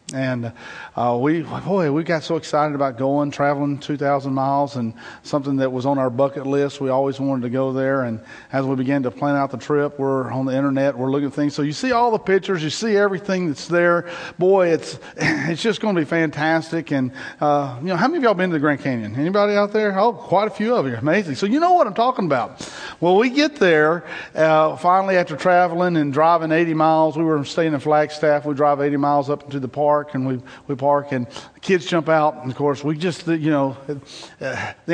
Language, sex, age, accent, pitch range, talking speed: English, male, 40-59, American, 140-180 Hz, 230 wpm